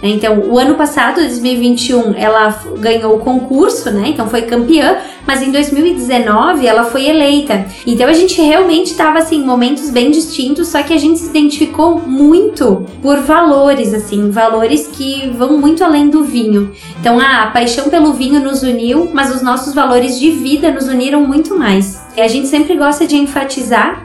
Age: 20-39